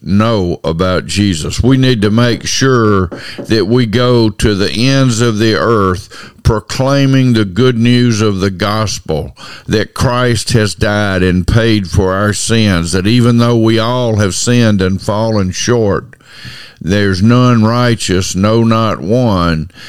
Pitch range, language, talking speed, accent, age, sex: 95-120 Hz, English, 150 wpm, American, 50-69, male